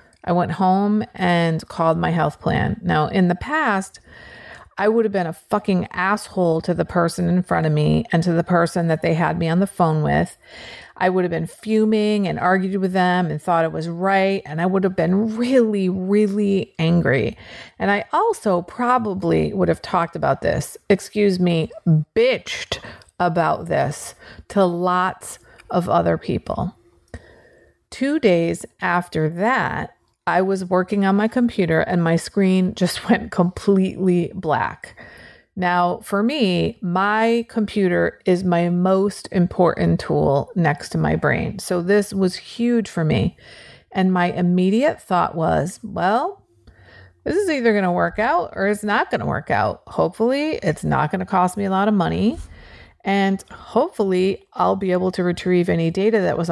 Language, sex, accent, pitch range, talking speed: English, female, American, 175-205 Hz, 170 wpm